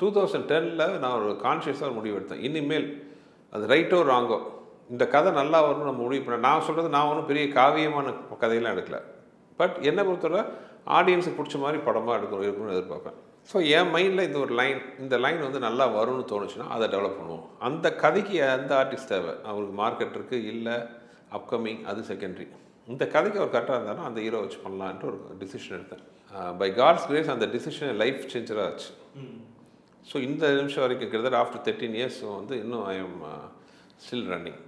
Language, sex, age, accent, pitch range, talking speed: Tamil, male, 40-59, native, 130-165 Hz, 165 wpm